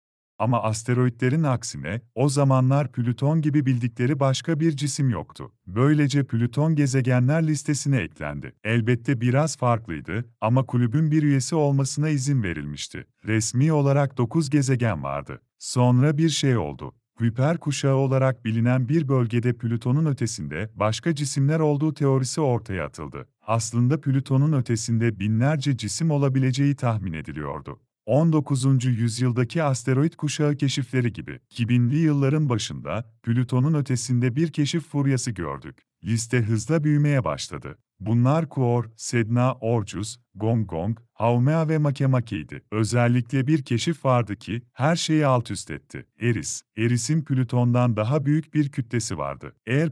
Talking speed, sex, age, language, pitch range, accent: 125 wpm, male, 40-59, Polish, 115-145 Hz, Turkish